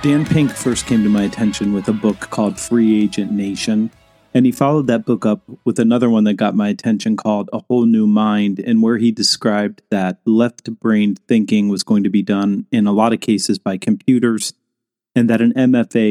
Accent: American